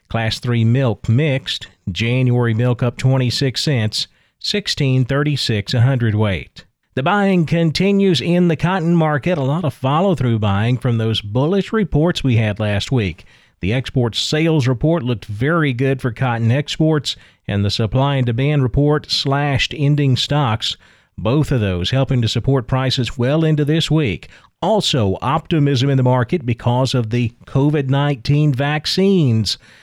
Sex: male